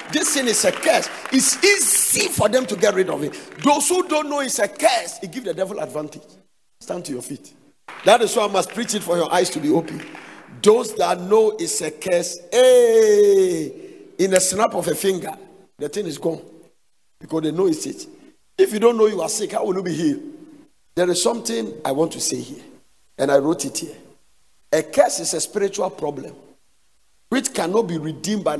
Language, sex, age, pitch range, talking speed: English, male, 50-69, 155-240 Hz, 210 wpm